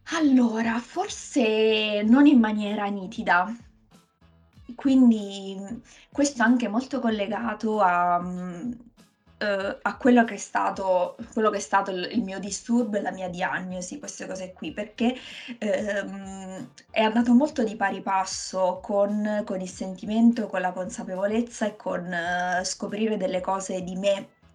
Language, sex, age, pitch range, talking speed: Italian, female, 20-39, 190-235 Hz, 125 wpm